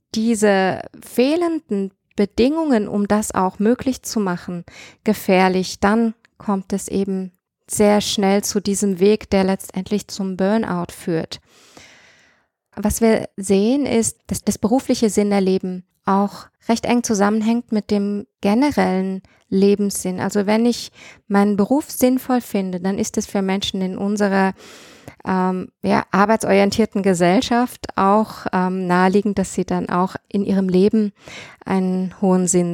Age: 20-39